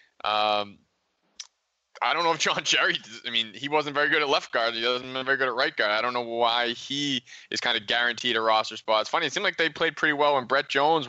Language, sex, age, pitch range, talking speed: English, male, 20-39, 105-125 Hz, 255 wpm